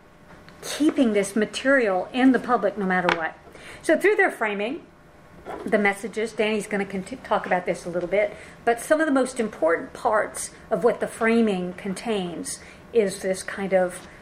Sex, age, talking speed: female, 50-69, 170 wpm